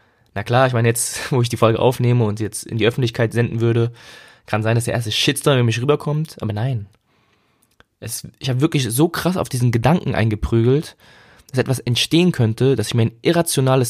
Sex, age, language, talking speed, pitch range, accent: male, 20-39, German, 205 wpm, 110-125 Hz, German